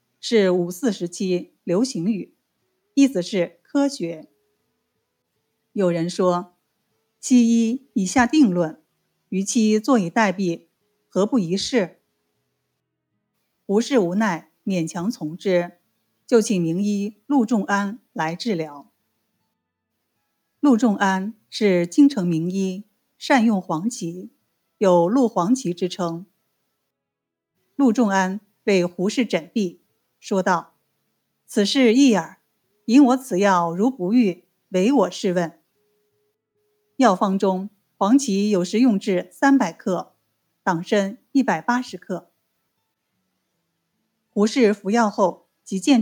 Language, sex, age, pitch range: Chinese, female, 50-69, 180-235 Hz